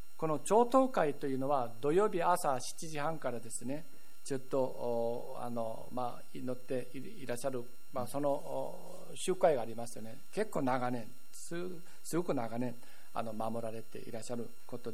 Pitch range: 115-150 Hz